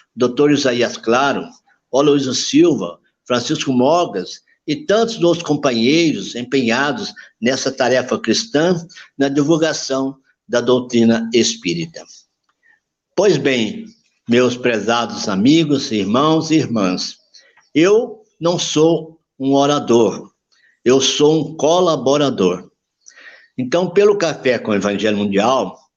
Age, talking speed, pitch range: 60-79, 100 wpm, 120-155 Hz